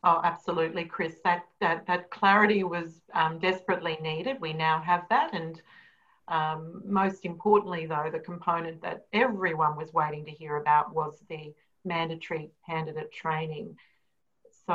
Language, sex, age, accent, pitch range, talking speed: English, female, 40-59, Australian, 155-180 Hz, 140 wpm